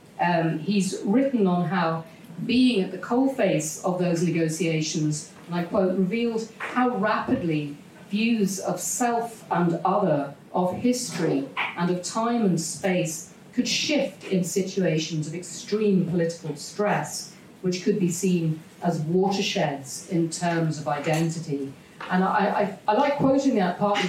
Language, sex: English, female